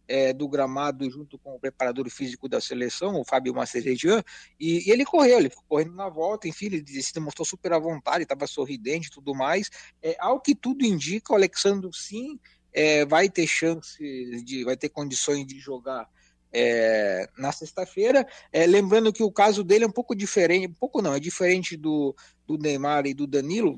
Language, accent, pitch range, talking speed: Portuguese, Brazilian, 145-195 Hz, 175 wpm